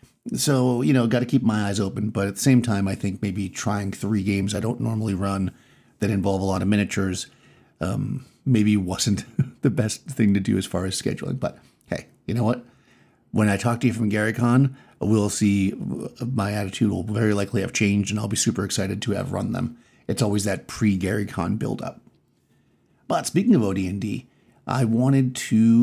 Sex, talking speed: male, 195 wpm